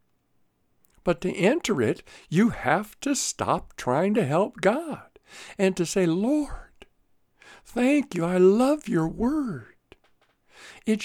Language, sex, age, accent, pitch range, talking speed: English, male, 60-79, American, 135-220 Hz, 125 wpm